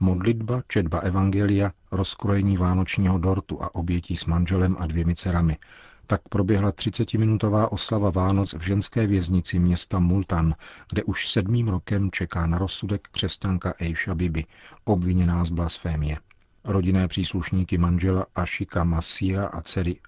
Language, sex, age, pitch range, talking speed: Czech, male, 40-59, 85-100 Hz, 130 wpm